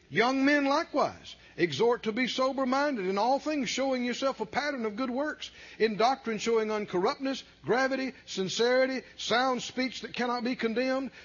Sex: male